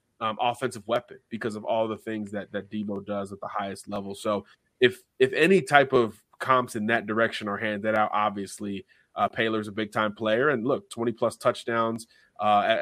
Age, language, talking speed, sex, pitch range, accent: 30-49, English, 185 wpm, male, 105-120 Hz, American